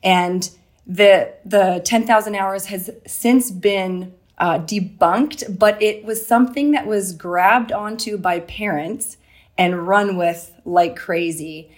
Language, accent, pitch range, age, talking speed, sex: English, American, 170-210 Hz, 30-49, 125 wpm, female